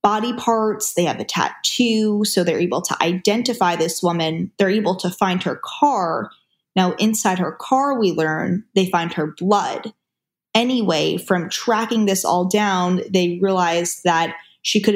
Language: English